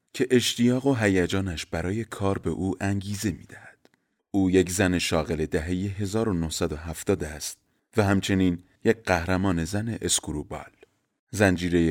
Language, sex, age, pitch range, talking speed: Persian, male, 30-49, 90-105 Hz, 125 wpm